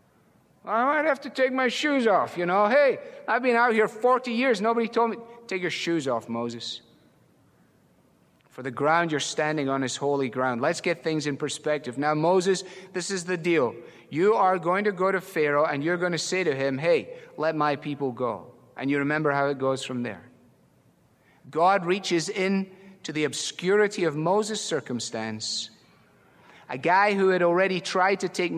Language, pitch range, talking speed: English, 140-180 Hz, 185 wpm